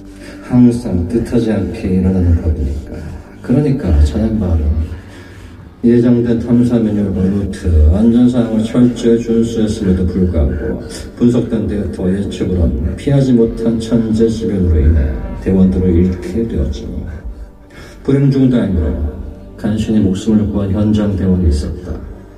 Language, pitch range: Korean, 90-110 Hz